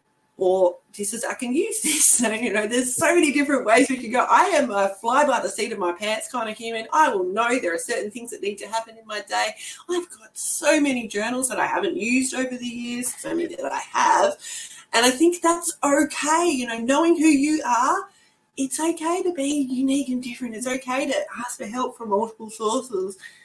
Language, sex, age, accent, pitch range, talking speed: English, female, 30-49, Australian, 205-305 Hz, 230 wpm